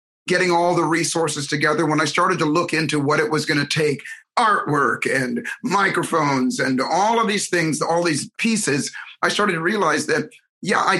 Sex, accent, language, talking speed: male, American, English, 190 wpm